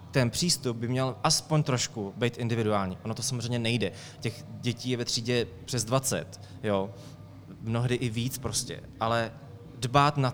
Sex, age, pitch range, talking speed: male, 20-39, 110-130 Hz, 155 wpm